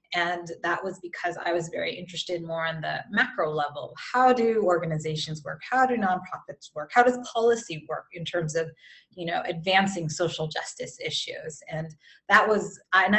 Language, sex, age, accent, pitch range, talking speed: English, female, 20-39, American, 165-200 Hz, 175 wpm